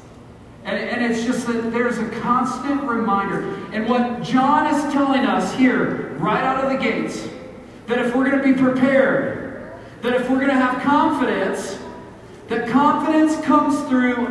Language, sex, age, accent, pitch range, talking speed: English, male, 40-59, American, 205-260 Hz, 160 wpm